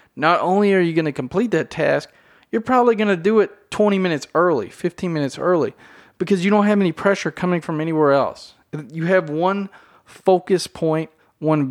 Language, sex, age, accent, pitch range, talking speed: English, male, 30-49, American, 140-185 Hz, 190 wpm